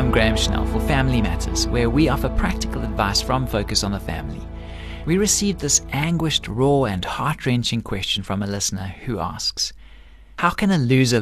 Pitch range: 105-135 Hz